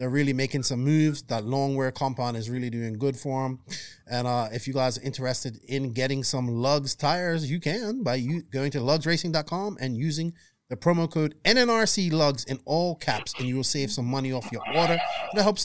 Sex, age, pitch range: male, 30-49, 130-170 Hz